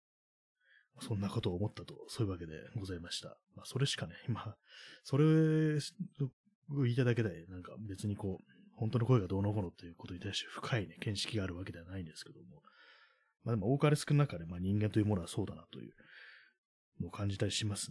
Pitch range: 95-135 Hz